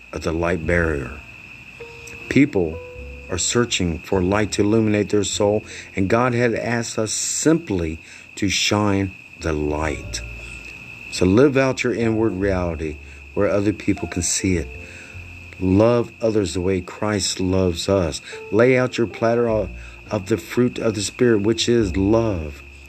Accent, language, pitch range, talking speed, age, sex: American, English, 85-110 Hz, 145 wpm, 50-69, male